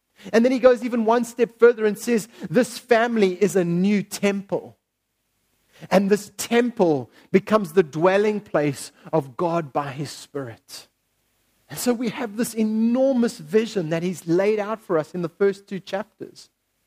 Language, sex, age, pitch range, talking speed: English, male, 40-59, 170-240 Hz, 165 wpm